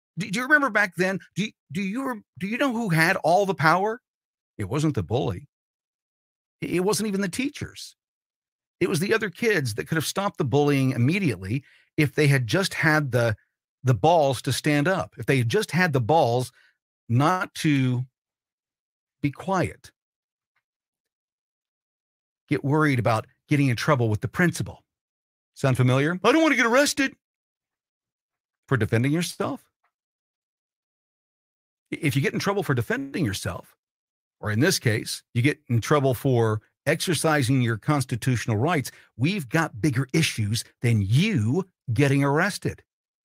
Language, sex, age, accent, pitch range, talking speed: English, male, 50-69, American, 135-200 Hz, 150 wpm